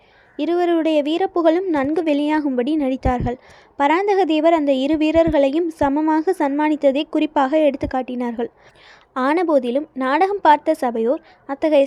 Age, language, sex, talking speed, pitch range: 20-39, Tamil, female, 100 wpm, 275-325 Hz